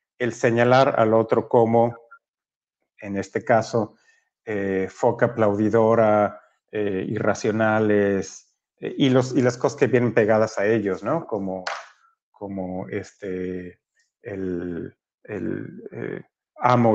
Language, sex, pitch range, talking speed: Spanish, male, 105-135 Hz, 105 wpm